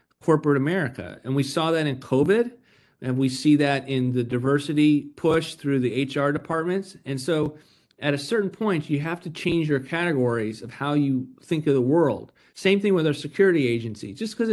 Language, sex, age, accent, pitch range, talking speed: English, male, 40-59, American, 130-165 Hz, 195 wpm